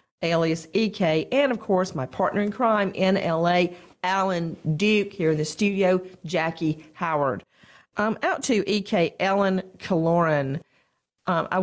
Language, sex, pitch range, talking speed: English, female, 150-195 Hz, 135 wpm